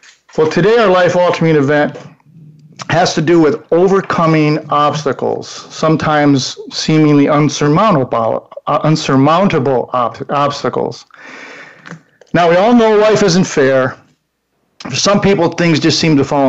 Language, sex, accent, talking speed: English, male, American, 120 wpm